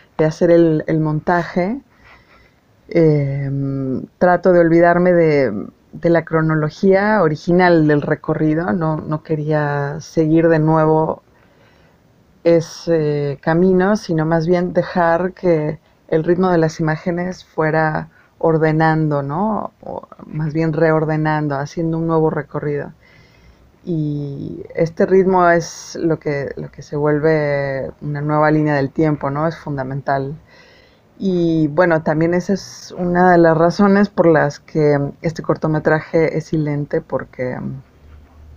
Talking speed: 120 wpm